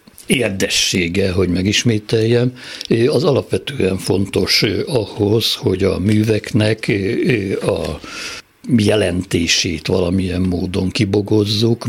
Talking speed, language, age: 75 wpm, Hungarian, 60-79